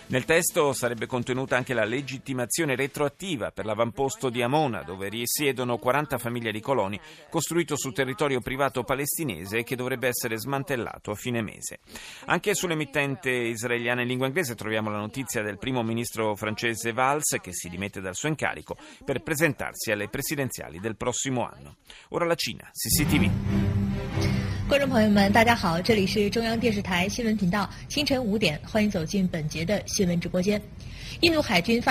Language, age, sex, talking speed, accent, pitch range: Italian, 30-49, male, 120 wpm, native, 110-150 Hz